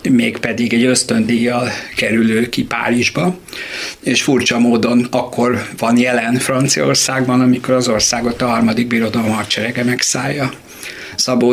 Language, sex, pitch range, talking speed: Hungarian, male, 120-130 Hz, 115 wpm